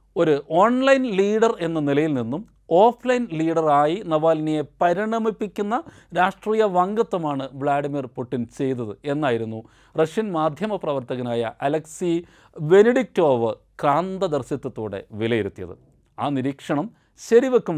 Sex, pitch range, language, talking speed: male, 130-180 Hz, Malayalam, 90 wpm